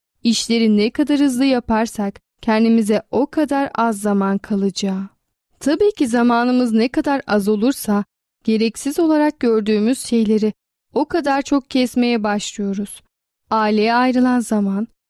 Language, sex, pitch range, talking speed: Turkish, female, 215-260 Hz, 120 wpm